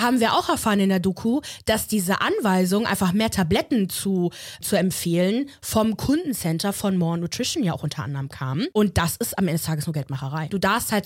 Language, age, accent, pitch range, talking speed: German, 20-39, German, 180-225 Hz, 205 wpm